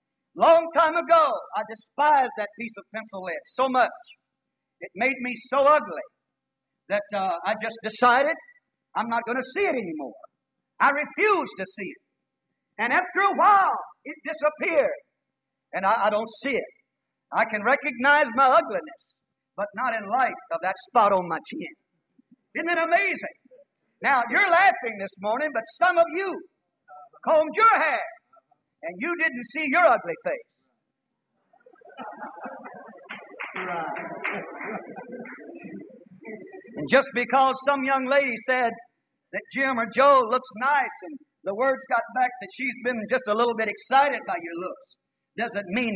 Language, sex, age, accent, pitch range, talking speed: English, male, 50-69, American, 220-325 Hz, 150 wpm